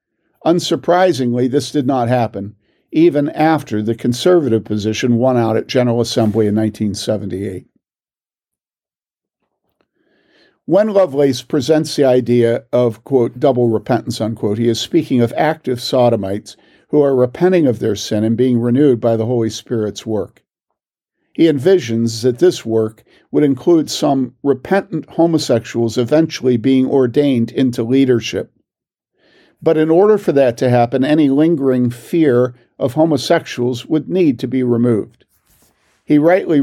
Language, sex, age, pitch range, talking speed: English, male, 50-69, 115-150 Hz, 135 wpm